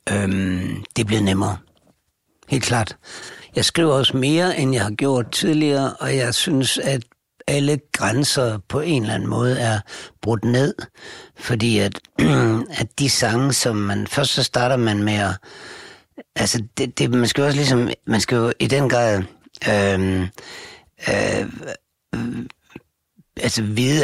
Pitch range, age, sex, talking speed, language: 100-130 Hz, 60-79, male, 145 wpm, Danish